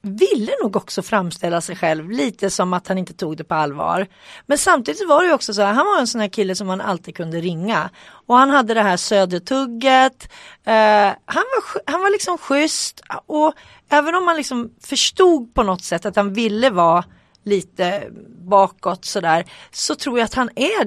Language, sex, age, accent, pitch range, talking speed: Swedish, female, 30-49, native, 180-265 Hz, 200 wpm